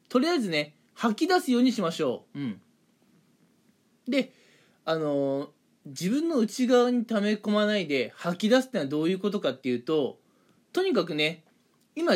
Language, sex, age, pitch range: Japanese, male, 20-39, 165-250 Hz